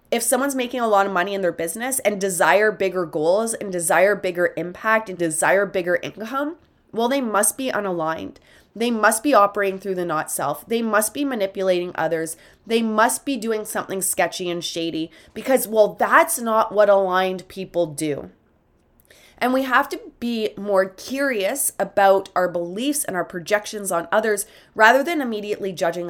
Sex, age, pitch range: female, 20-39, 175-230 Hz